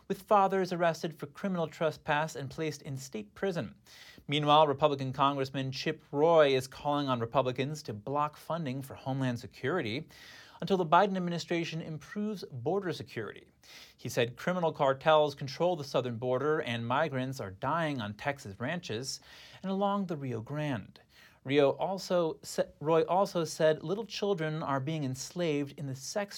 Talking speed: 150 wpm